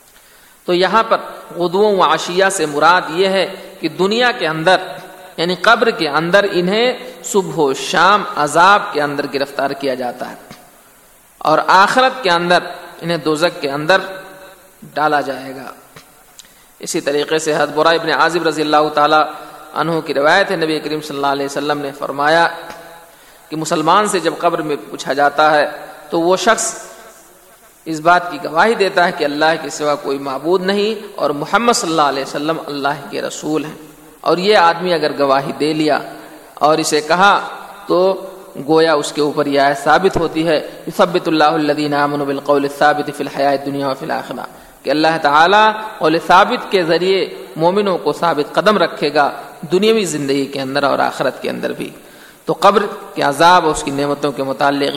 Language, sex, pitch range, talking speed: Urdu, male, 145-175 Hz, 170 wpm